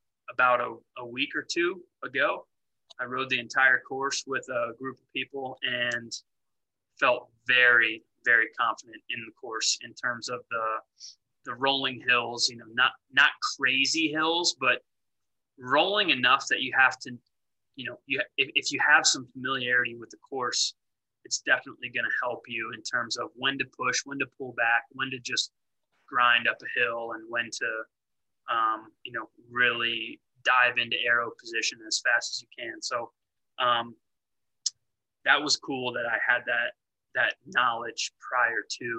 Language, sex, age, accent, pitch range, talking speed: English, male, 20-39, American, 115-130 Hz, 170 wpm